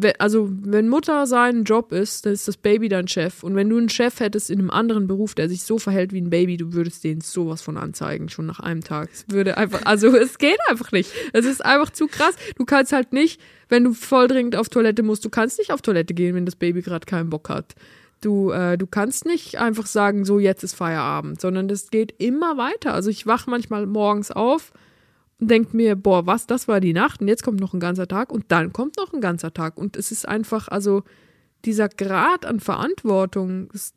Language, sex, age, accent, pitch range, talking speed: German, female, 20-39, German, 190-230 Hz, 225 wpm